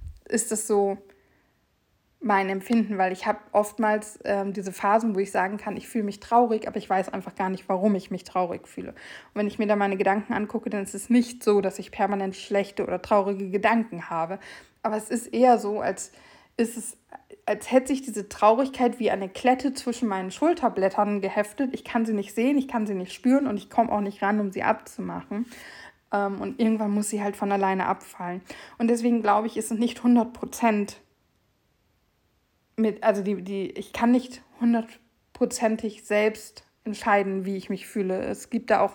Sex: female